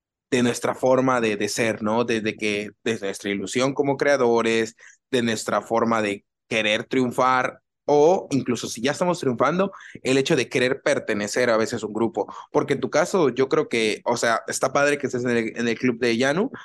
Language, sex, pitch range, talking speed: Spanish, male, 110-135 Hz, 200 wpm